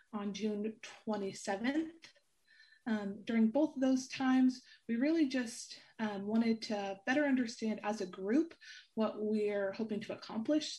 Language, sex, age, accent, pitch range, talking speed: English, female, 20-39, American, 205-255 Hz, 140 wpm